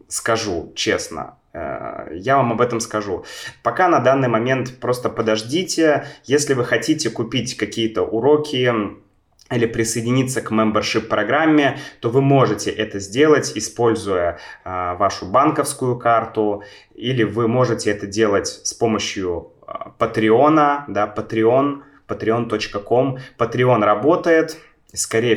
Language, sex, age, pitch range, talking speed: Russian, male, 20-39, 105-135 Hz, 110 wpm